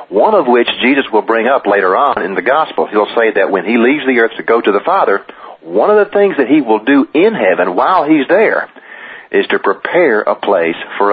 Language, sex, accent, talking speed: English, male, American, 235 wpm